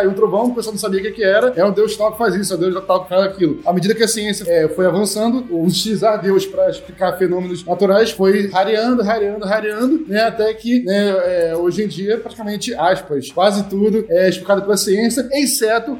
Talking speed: 220 wpm